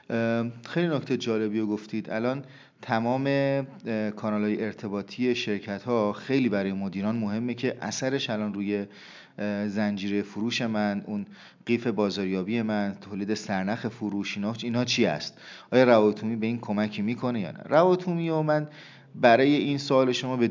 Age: 30-49